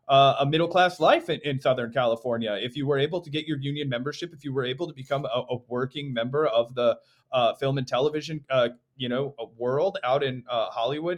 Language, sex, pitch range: English, male, 120-145 Hz